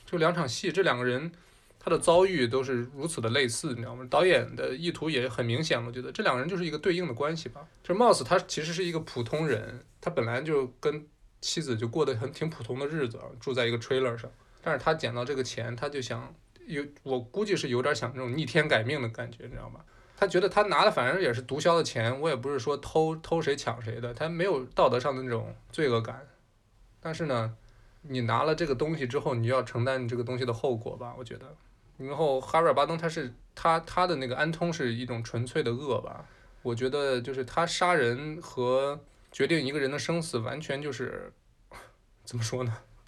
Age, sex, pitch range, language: 20-39, male, 120-160 Hz, Chinese